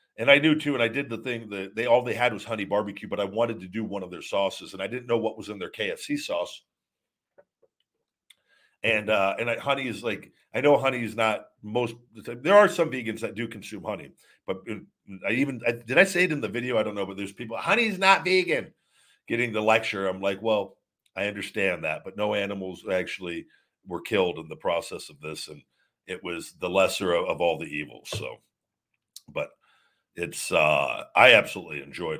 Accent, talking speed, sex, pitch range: American, 210 wpm, male, 95-130 Hz